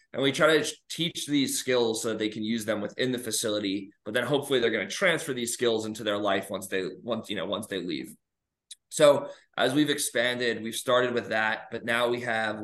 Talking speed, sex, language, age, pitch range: 230 wpm, male, English, 20-39, 110-140 Hz